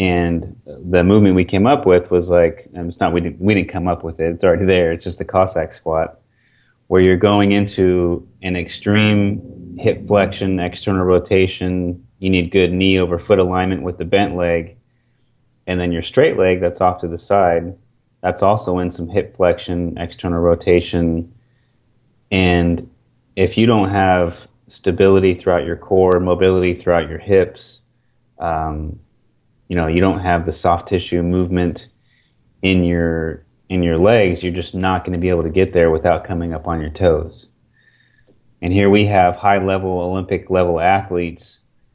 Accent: American